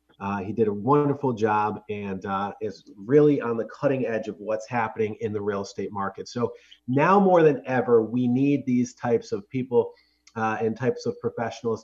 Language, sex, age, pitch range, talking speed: English, male, 30-49, 110-145 Hz, 195 wpm